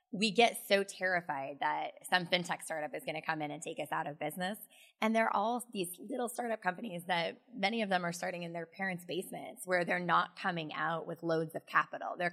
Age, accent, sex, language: 20-39, American, female, English